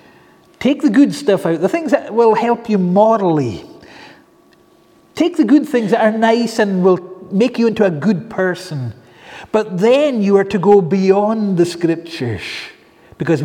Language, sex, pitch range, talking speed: English, male, 160-225 Hz, 165 wpm